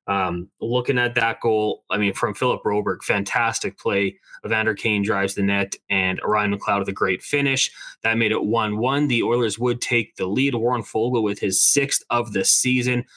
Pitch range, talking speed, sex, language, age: 110-135 Hz, 190 wpm, male, English, 20-39